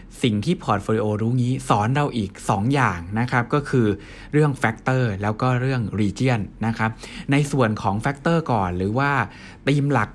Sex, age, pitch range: male, 60-79, 105-140 Hz